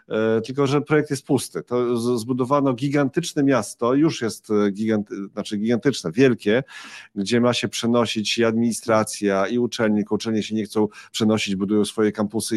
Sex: male